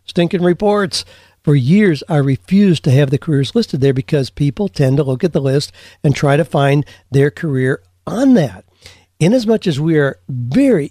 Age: 60-79